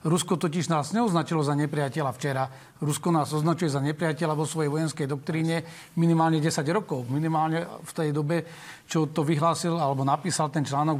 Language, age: Slovak, 40-59